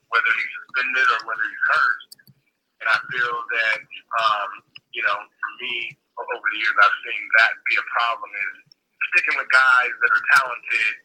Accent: American